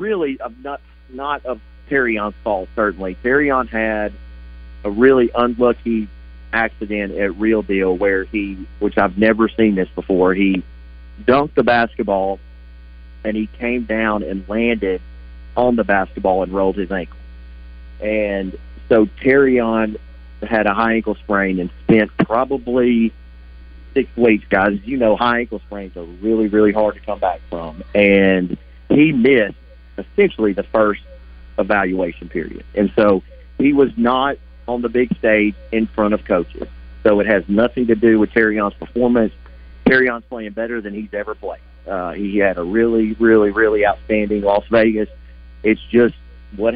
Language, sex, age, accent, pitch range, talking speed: English, male, 40-59, American, 85-115 Hz, 155 wpm